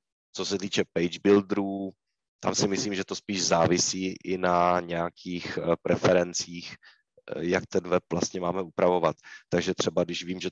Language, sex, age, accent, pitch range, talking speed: Czech, male, 30-49, native, 85-90 Hz, 155 wpm